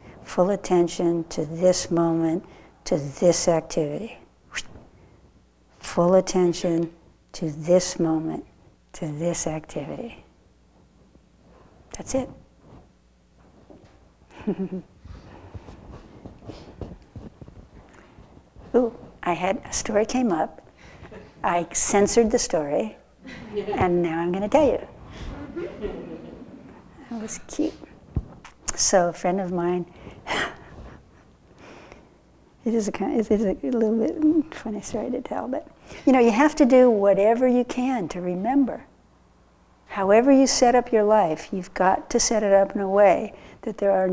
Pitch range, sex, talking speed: 170-220 Hz, female, 120 wpm